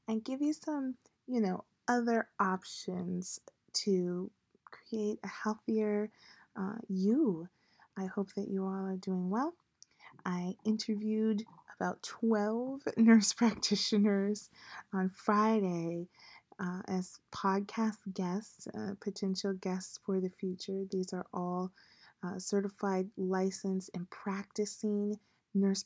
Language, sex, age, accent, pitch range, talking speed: English, female, 30-49, American, 185-215 Hz, 115 wpm